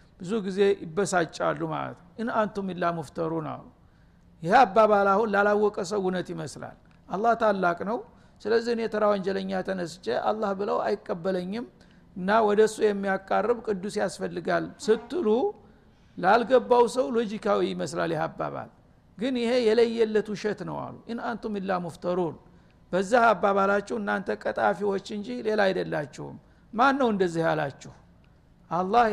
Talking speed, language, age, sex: 90 wpm, Amharic, 60-79, male